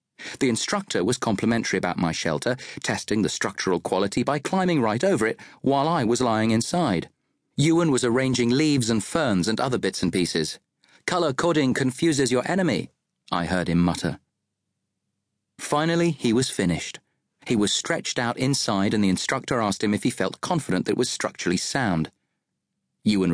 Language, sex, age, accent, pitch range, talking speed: English, male, 40-59, British, 100-140 Hz, 165 wpm